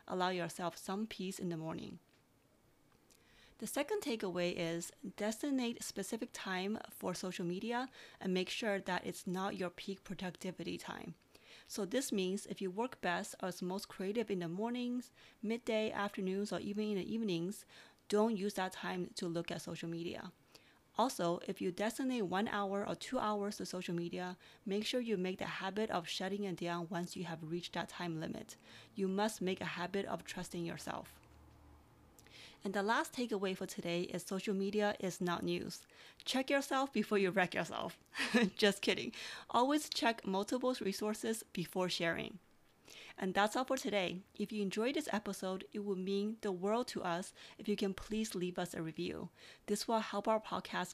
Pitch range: 180-215 Hz